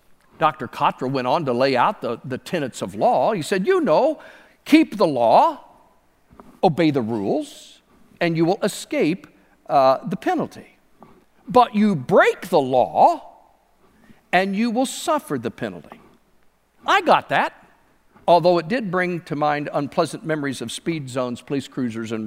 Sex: male